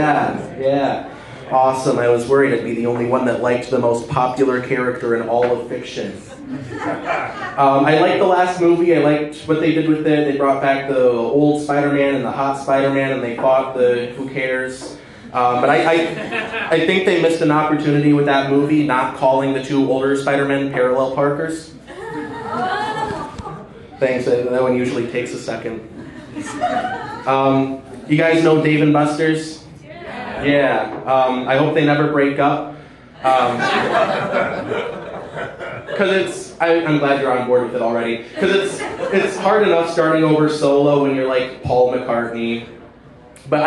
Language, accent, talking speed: English, American, 165 wpm